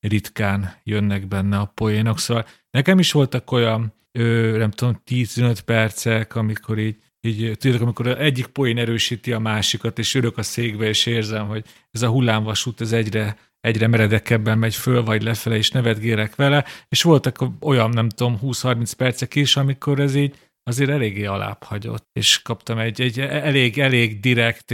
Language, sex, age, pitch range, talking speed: Hungarian, male, 40-59, 115-135 Hz, 160 wpm